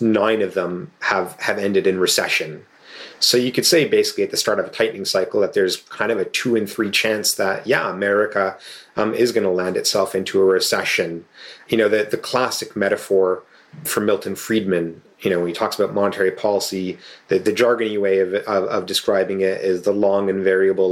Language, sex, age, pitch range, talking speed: English, male, 30-49, 95-105 Hz, 205 wpm